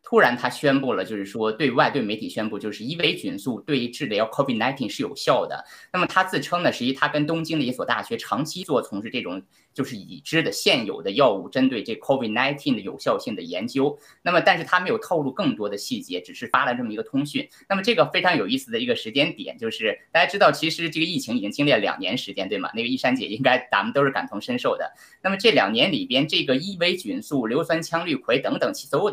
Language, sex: Chinese, male